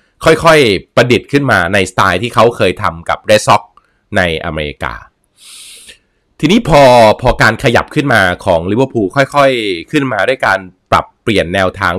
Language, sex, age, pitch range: Thai, male, 20-39, 95-125 Hz